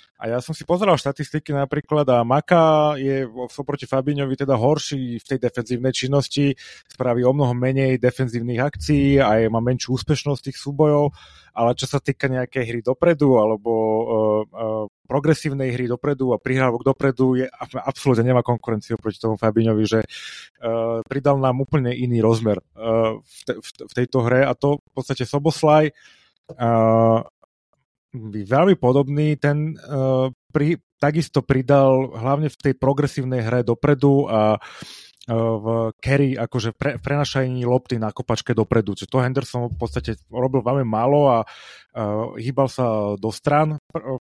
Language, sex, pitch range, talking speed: Slovak, male, 115-140 Hz, 155 wpm